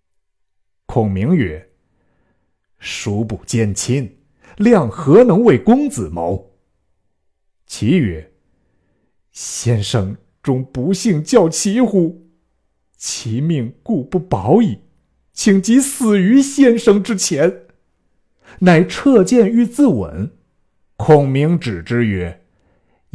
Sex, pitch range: male, 95-150 Hz